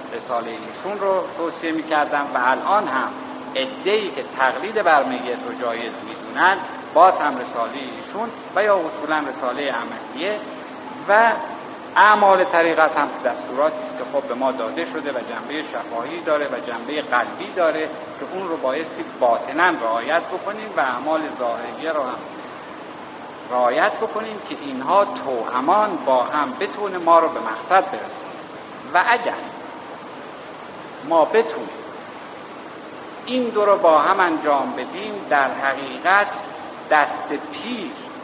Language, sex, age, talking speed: Persian, male, 60-79, 130 wpm